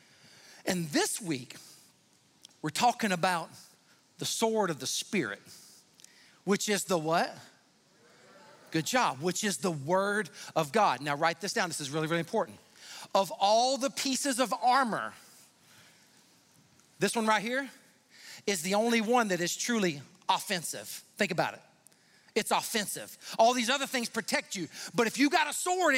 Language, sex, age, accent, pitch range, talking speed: English, male, 40-59, American, 180-250 Hz, 155 wpm